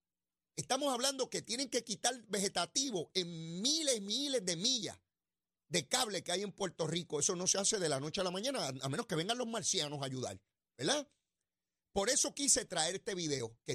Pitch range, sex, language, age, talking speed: 155-230 Hz, male, Spanish, 40-59, 200 wpm